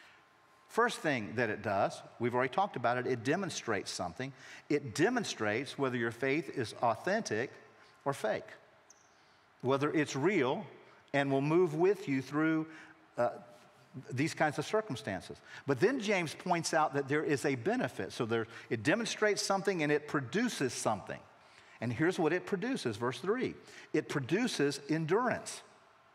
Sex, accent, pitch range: male, American, 140-195 Hz